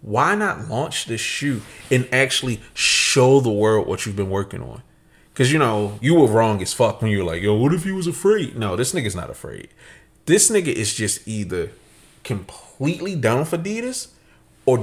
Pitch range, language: 110-140 Hz, English